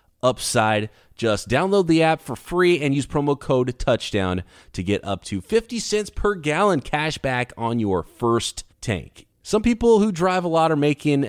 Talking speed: 180 wpm